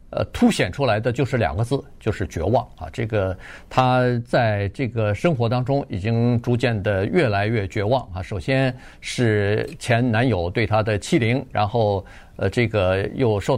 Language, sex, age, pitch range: Chinese, male, 50-69, 105-130 Hz